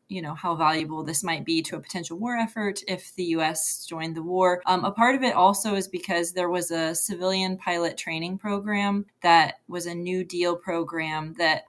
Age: 20-39